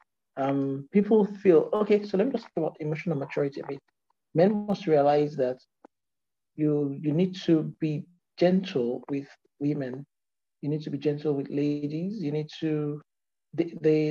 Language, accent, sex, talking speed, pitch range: English, Nigerian, male, 155 wpm, 145-195 Hz